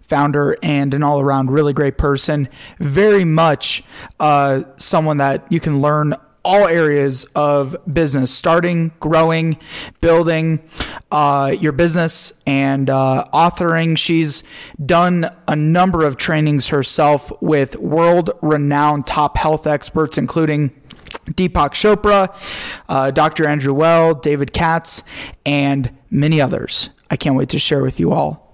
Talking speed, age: 125 wpm, 20-39